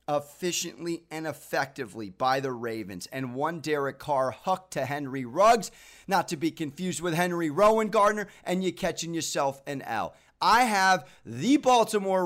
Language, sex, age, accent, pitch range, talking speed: English, male, 30-49, American, 135-210 Hz, 155 wpm